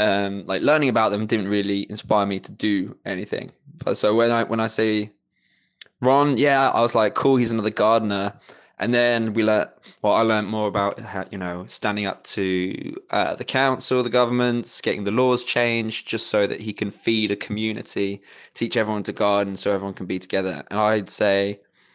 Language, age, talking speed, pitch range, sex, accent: English, 20-39, 195 wpm, 100-120 Hz, male, British